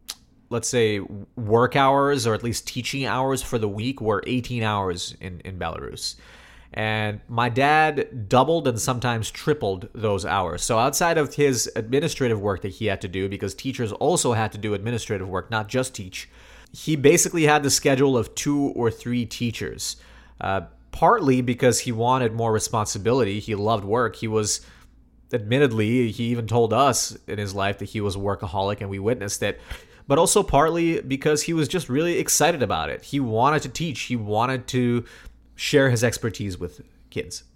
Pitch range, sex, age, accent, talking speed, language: 95-125 Hz, male, 30-49, American, 175 wpm, English